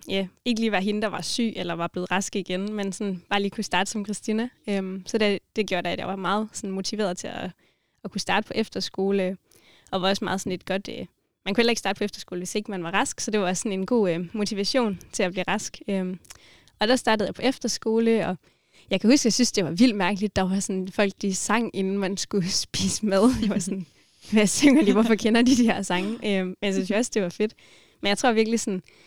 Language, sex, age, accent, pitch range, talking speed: Danish, female, 20-39, native, 185-220 Hz, 250 wpm